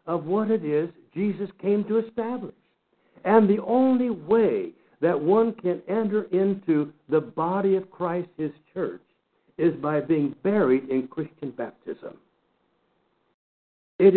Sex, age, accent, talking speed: male, 60-79, American, 130 wpm